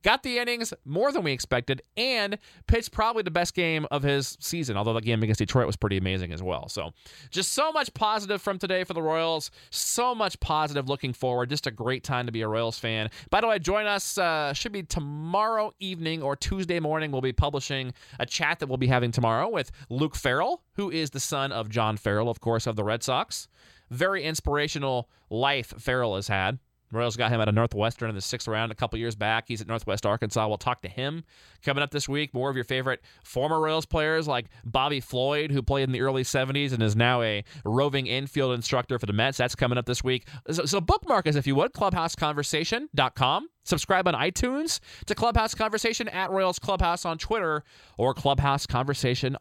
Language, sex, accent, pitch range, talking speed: English, male, American, 115-165 Hz, 210 wpm